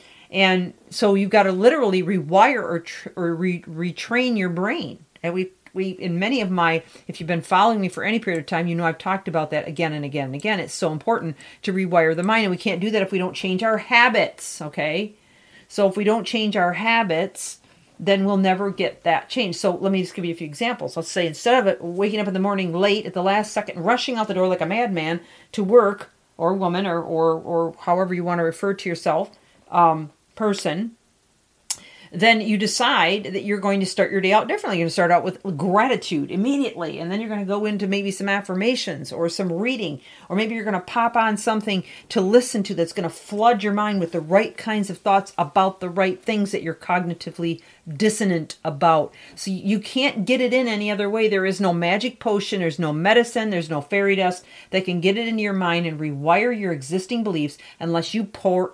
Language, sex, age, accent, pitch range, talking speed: English, female, 40-59, American, 170-210 Hz, 225 wpm